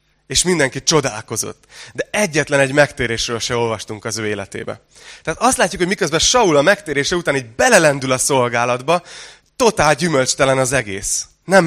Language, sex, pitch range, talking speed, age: Hungarian, male, 120-155 Hz, 155 wpm, 20-39